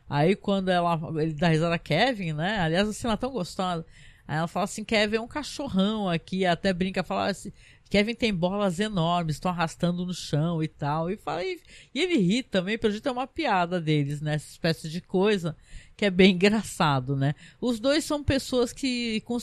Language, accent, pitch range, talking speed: Portuguese, Brazilian, 170-220 Hz, 205 wpm